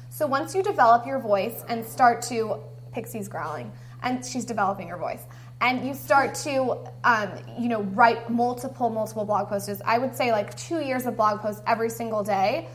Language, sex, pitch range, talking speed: English, female, 185-250 Hz, 180 wpm